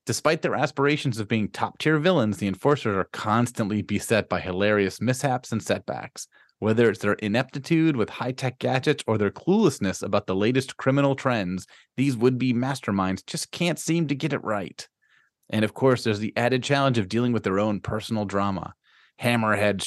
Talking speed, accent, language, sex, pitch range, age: 170 wpm, American, English, male, 105-130 Hz, 30-49